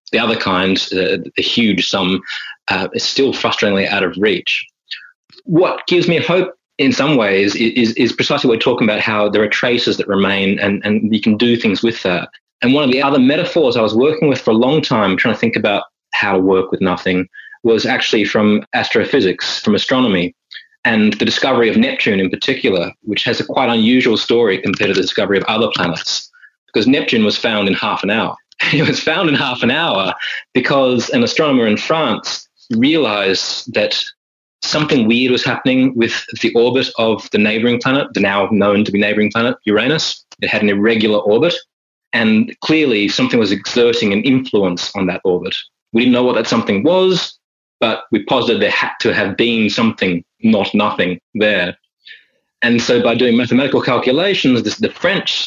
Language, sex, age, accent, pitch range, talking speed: English, male, 20-39, Australian, 105-130 Hz, 190 wpm